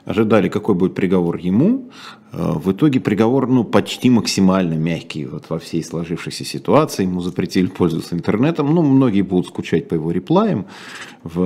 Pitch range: 90-130 Hz